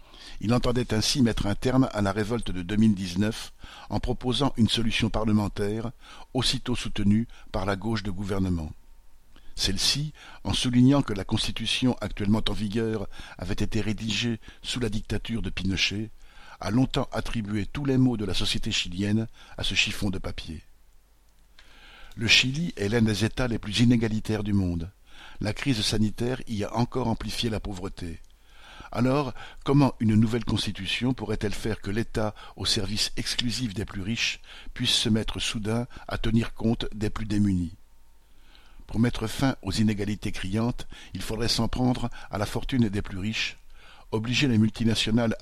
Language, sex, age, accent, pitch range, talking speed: French, male, 60-79, French, 100-115 Hz, 155 wpm